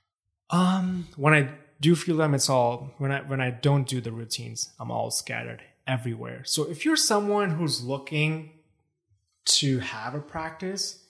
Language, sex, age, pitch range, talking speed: English, male, 20-39, 115-150 Hz, 160 wpm